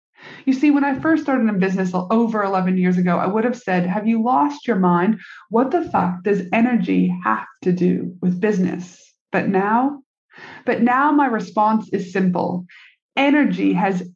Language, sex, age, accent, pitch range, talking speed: English, female, 30-49, American, 185-250 Hz, 175 wpm